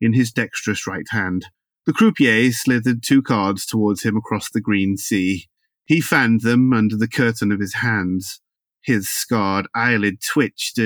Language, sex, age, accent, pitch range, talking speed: English, male, 30-49, British, 100-120 Hz, 160 wpm